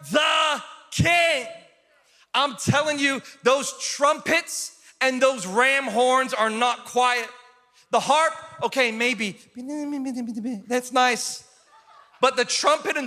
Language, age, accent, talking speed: English, 40-59, American, 110 wpm